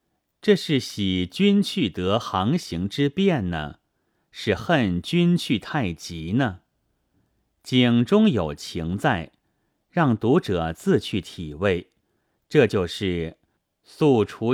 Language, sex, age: Chinese, male, 30-49